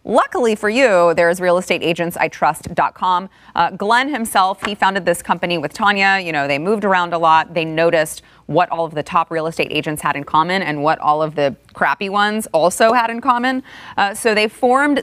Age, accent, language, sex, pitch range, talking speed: 30-49, American, English, female, 160-205 Hz, 195 wpm